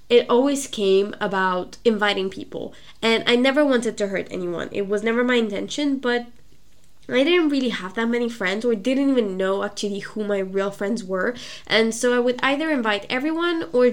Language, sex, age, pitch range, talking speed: English, female, 10-29, 200-255 Hz, 190 wpm